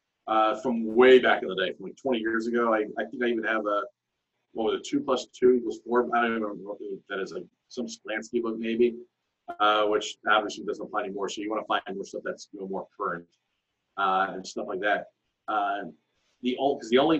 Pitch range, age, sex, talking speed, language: 115-140 Hz, 30-49, male, 235 wpm, English